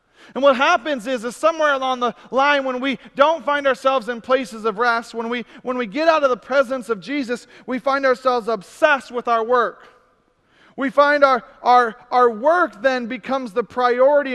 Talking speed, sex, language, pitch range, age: 190 wpm, male, English, 240-275 Hz, 40-59